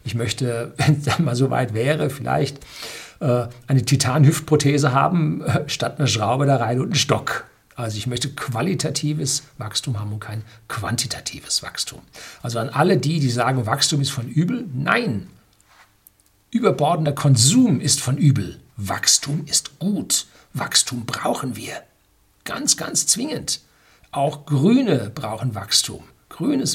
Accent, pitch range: German, 125-150 Hz